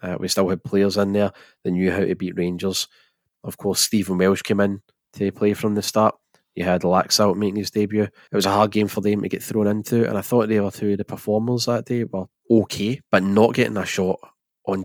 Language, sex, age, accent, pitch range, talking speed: English, male, 20-39, British, 95-110 Hz, 245 wpm